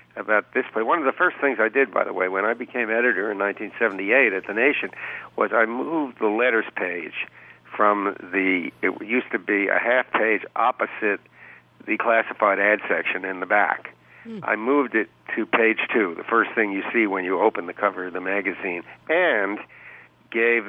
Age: 60-79